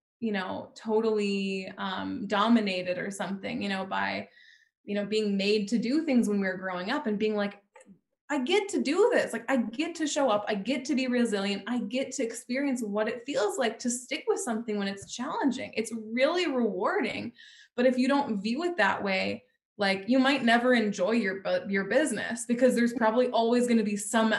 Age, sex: 20-39, female